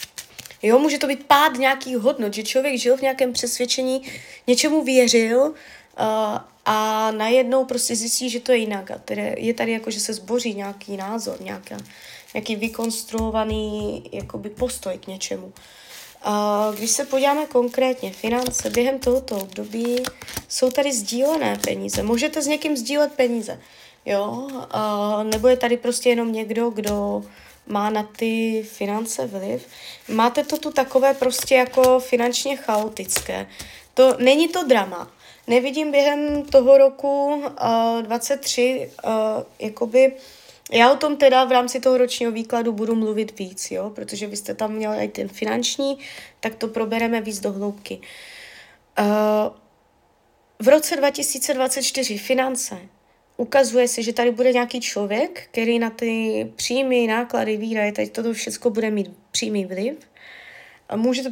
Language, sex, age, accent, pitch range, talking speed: Czech, female, 20-39, native, 215-265 Hz, 140 wpm